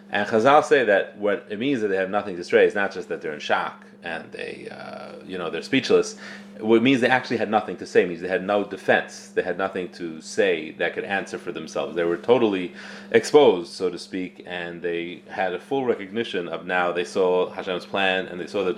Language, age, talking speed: English, 30-49, 240 wpm